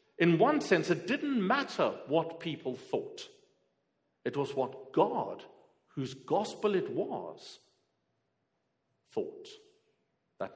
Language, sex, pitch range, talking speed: English, male, 145-215 Hz, 110 wpm